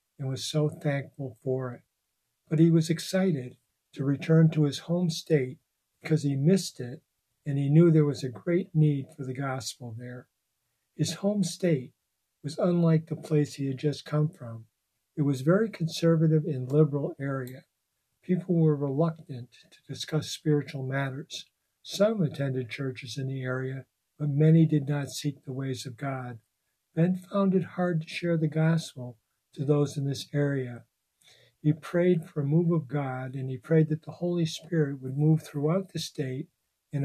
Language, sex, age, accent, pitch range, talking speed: English, male, 60-79, American, 130-160 Hz, 170 wpm